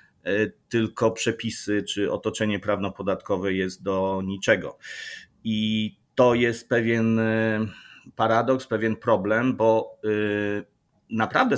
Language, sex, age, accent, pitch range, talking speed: Polish, male, 30-49, native, 105-120 Hz, 90 wpm